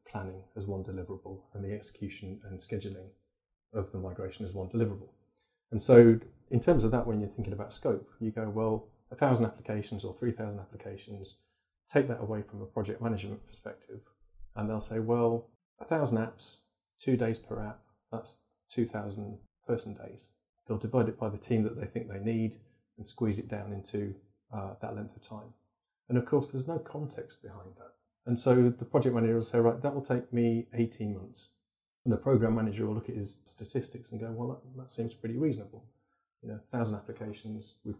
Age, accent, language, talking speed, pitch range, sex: 30-49, British, English, 195 wpm, 105-120 Hz, male